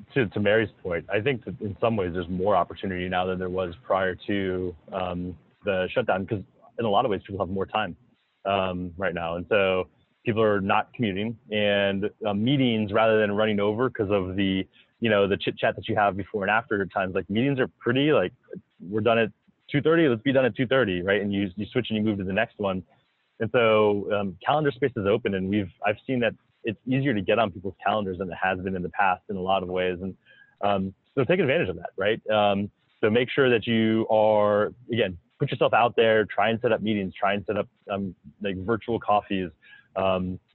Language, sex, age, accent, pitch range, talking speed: English, male, 20-39, American, 95-115 Hz, 230 wpm